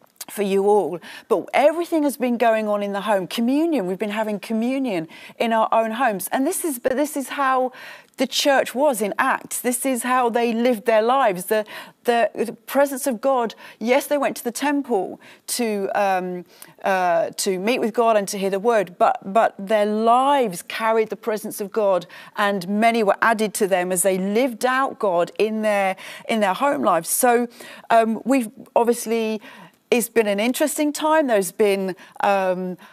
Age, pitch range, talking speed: 40-59, 200-255 Hz, 185 wpm